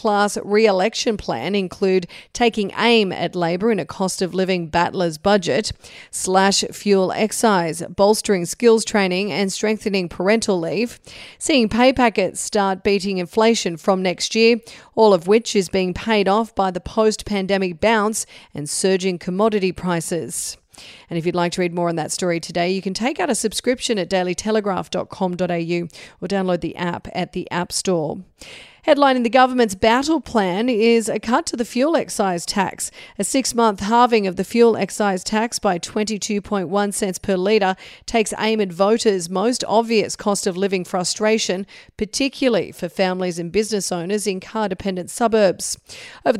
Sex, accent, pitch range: female, Australian, 185-220 Hz